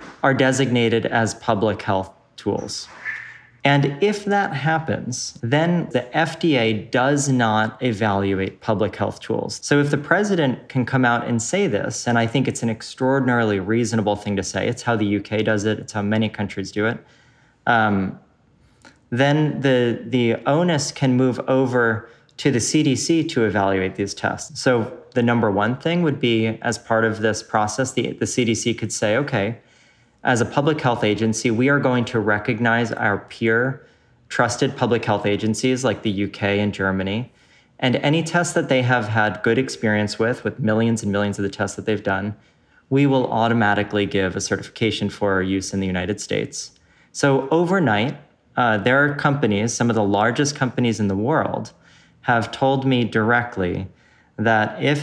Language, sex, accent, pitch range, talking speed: English, male, American, 105-135 Hz, 170 wpm